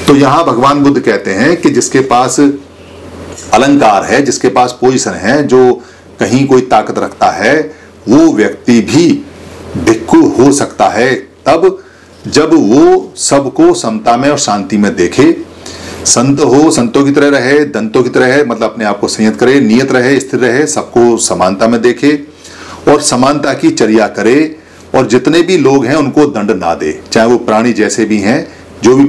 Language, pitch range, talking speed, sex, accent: Hindi, 110-170 Hz, 170 wpm, male, native